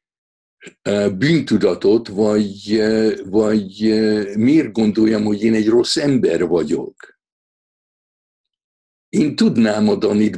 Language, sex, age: Hungarian, male, 60-79